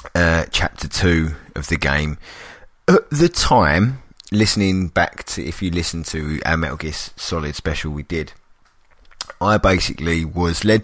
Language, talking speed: English, 150 wpm